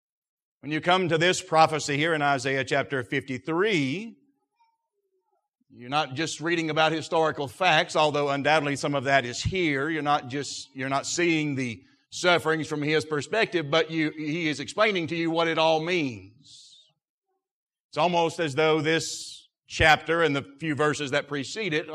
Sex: male